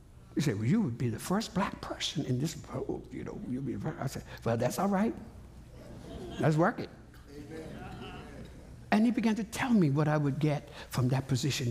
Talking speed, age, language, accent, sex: 200 wpm, 60-79, English, American, male